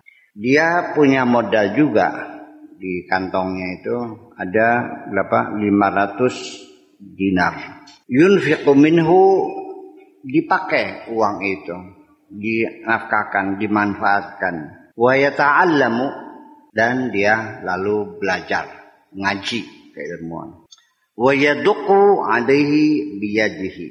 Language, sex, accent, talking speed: Indonesian, male, native, 65 wpm